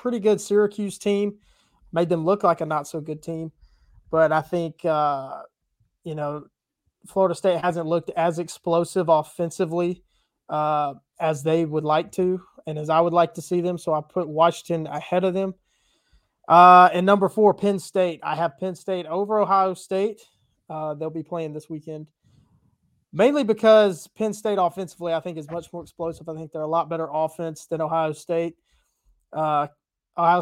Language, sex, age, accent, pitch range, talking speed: English, male, 20-39, American, 155-190 Hz, 175 wpm